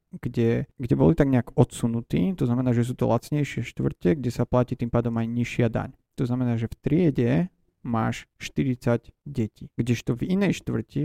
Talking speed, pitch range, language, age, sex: 180 wpm, 115-140 Hz, Slovak, 30-49, male